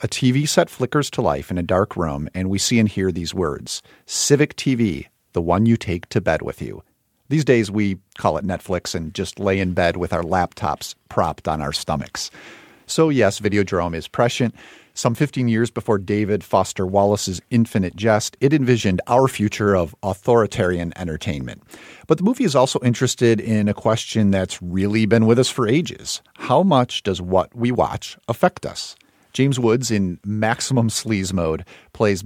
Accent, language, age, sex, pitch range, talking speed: American, English, 50-69, male, 90-120 Hz, 180 wpm